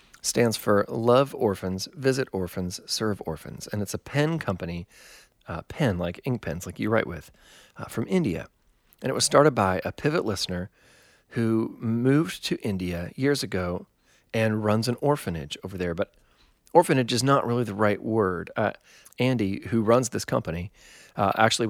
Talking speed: 170 wpm